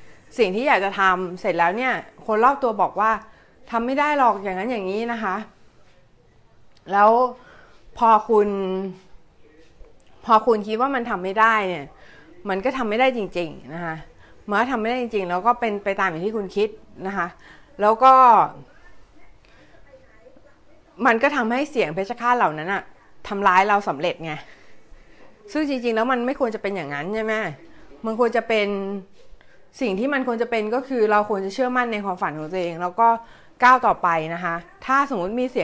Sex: female